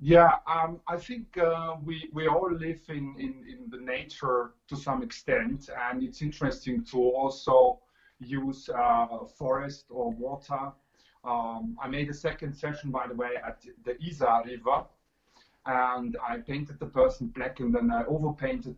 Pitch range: 125-165 Hz